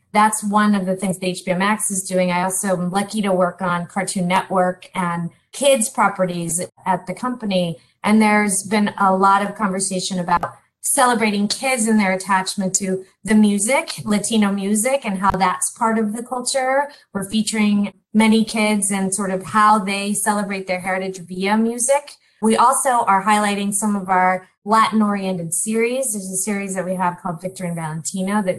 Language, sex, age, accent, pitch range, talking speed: English, female, 20-39, American, 185-220 Hz, 175 wpm